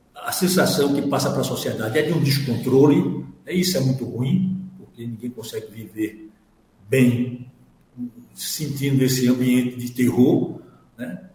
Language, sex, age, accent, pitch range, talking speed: Portuguese, male, 60-79, Brazilian, 120-175 Hz, 150 wpm